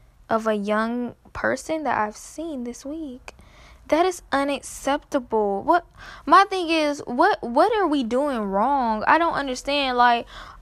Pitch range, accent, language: 215-290 Hz, American, English